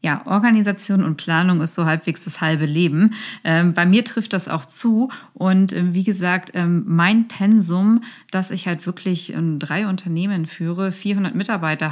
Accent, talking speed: German, 170 wpm